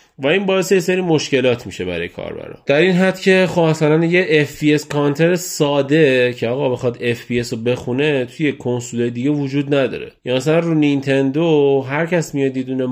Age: 30-49